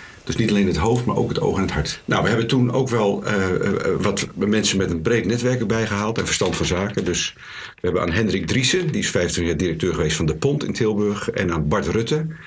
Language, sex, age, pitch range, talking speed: Dutch, male, 50-69, 95-125 Hz, 250 wpm